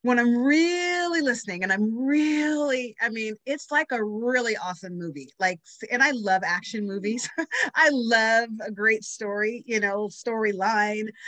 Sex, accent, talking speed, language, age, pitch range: female, American, 150 wpm, English, 30-49, 195-250 Hz